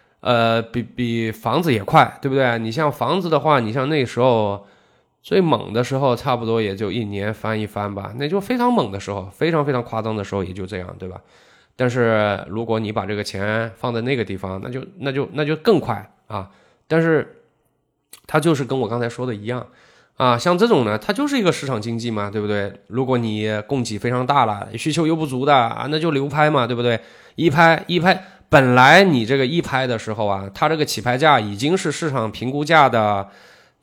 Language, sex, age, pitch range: Chinese, male, 20-39, 110-155 Hz